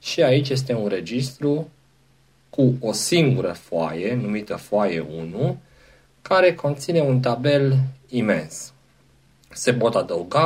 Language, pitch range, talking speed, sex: Romanian, 90-135 Hz, 115 wpm, male